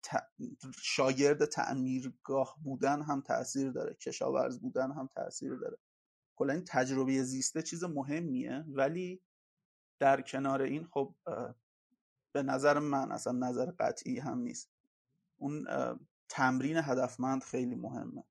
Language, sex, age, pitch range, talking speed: Persian, male, 30-49, 130-170 Hz, 120 wpm